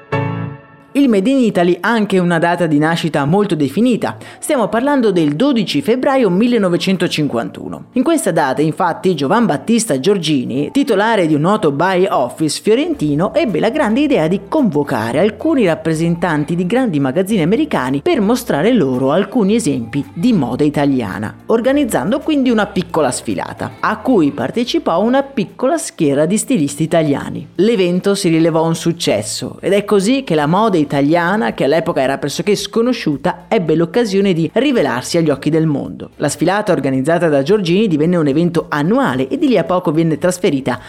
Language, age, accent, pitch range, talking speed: Italian, 30-49, native, 150-225 Hz, 155 wpm